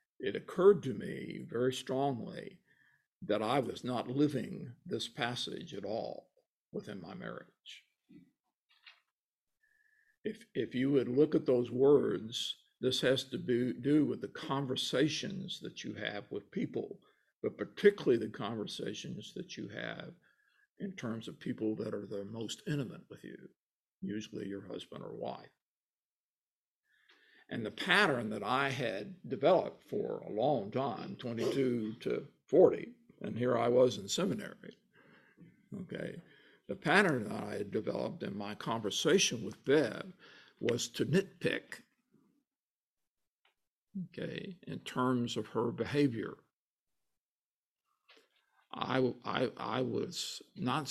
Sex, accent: male, American